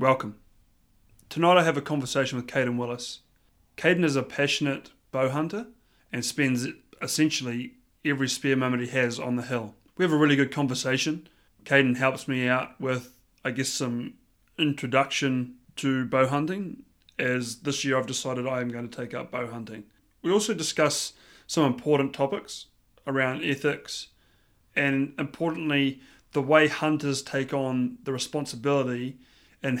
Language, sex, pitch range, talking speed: English, male, 125-145 Hz, 150 wpm